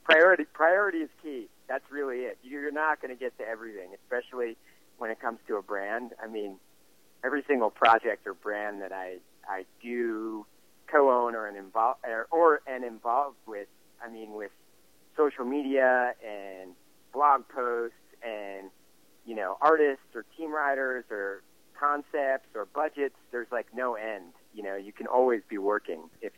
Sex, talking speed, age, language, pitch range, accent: male, 155 wpm, 50-69, English, 95-130 Hz, American